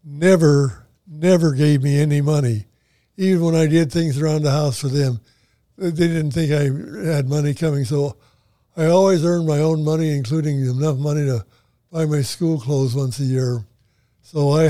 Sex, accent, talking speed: male, American, 175 wpm